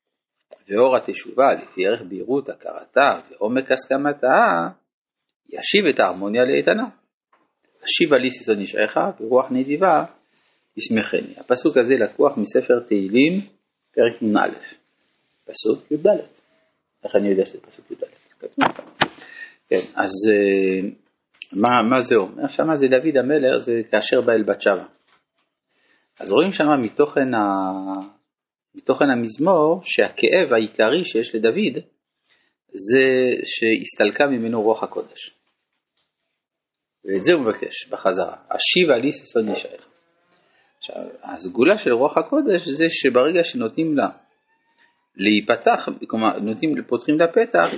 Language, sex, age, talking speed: Hebrew, male, 40-59, 105 wpm